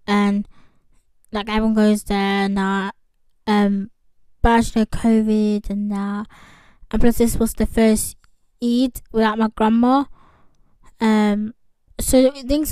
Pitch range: 215-260 Hz